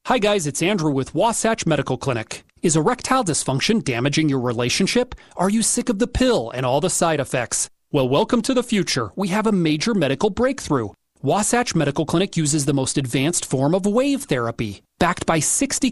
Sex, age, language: male, 30-49, English